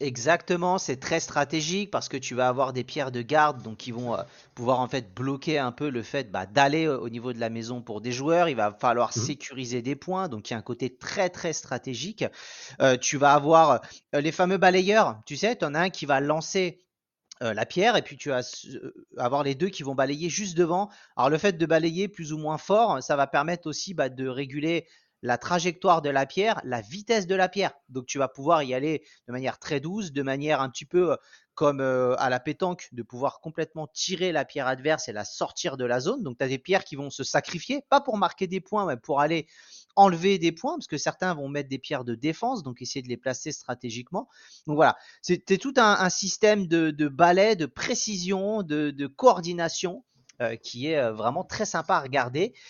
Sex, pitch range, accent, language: male, 130-180 Hz, French, French